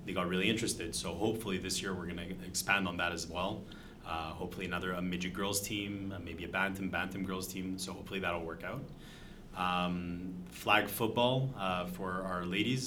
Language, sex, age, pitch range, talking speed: English, male, 30-49, 90-105 Hz, 195 wpm